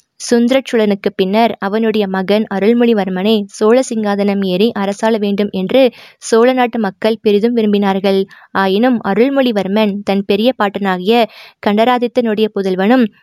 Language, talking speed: Tamil, 100 wpm